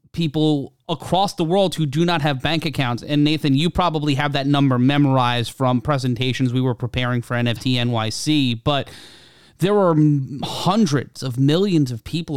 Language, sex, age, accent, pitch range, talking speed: English, male, 30-49, American, 125-150 Hz, 165 wpm